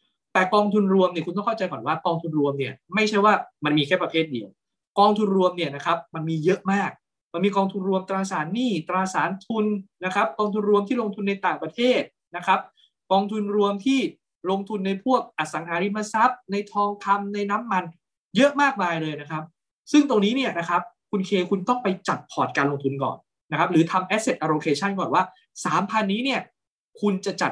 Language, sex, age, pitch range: English, male, 20-39, 155-200 Hz